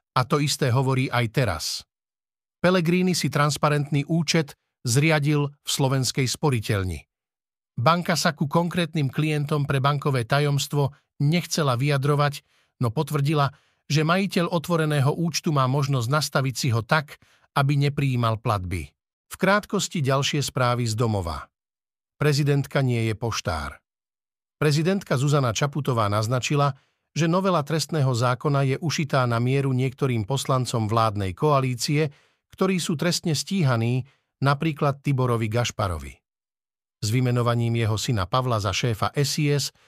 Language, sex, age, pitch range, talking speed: Slovak, male, 50-69, 120-155 Hz, 120 wpm